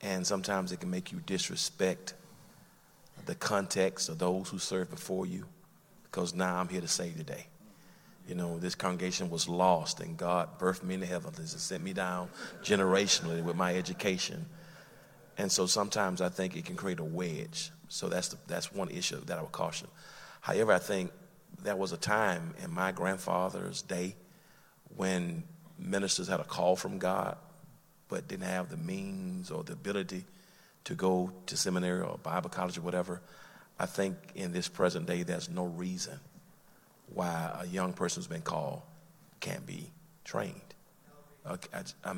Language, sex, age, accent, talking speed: English, male, 40-59, American, 170 wpm